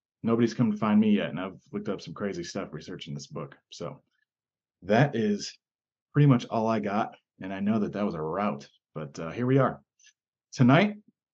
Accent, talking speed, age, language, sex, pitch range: American, 200 wpm, 30-49, English, male, 105-140 Hz